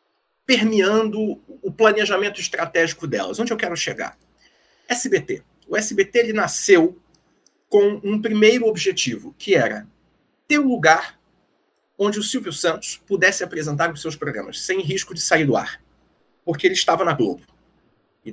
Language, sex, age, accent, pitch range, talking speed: Portuguese, male, 40-59, Brazilian, 170-255 Hz, 140 wpm